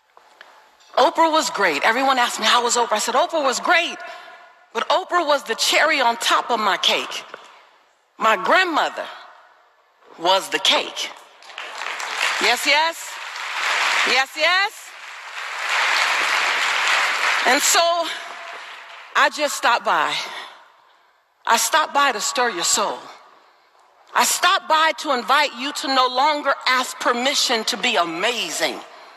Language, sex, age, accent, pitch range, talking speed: English, female, 40-59, American, 275-360 Hz, 125 wpm